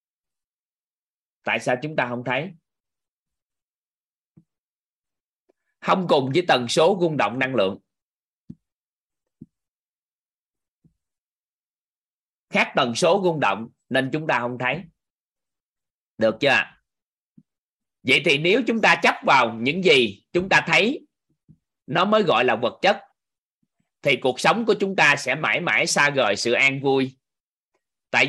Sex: male